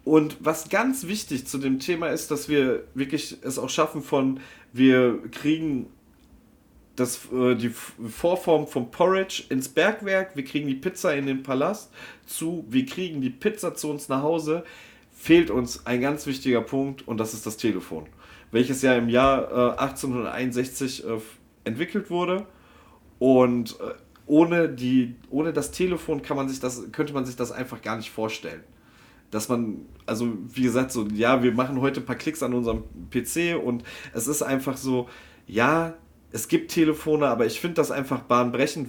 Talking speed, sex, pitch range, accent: 165 wpm, male, 120-155 Hz, German